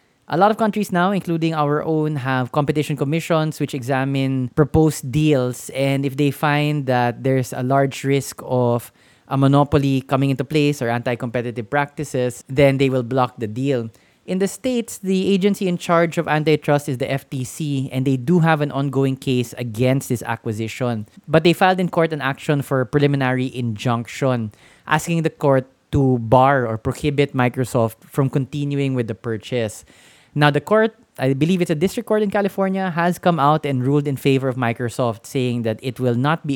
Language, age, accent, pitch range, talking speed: English, 20-39, Filipino, 125-155 Hz, 180 wpm